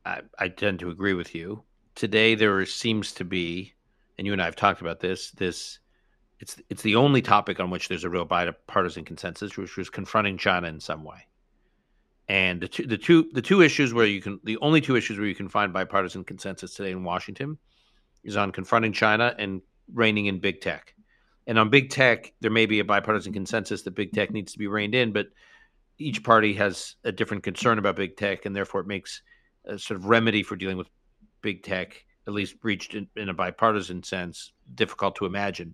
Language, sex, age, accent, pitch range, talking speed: English, male, 50-69, American, 95-115 Hz, 210 wpm